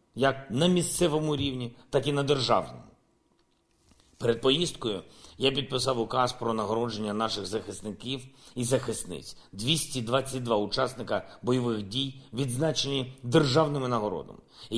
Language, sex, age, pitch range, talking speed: Ukrainian, male, 50-69, 115-145 Hz, 105 wpm